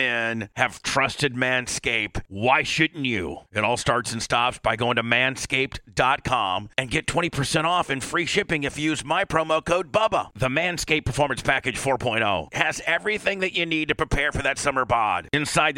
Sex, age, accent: male, 40-59, American